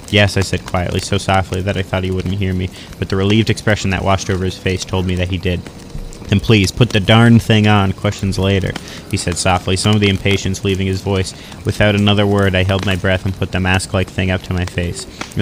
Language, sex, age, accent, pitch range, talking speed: English, male, 30-49, American, 95-105 Hz, 245 wpm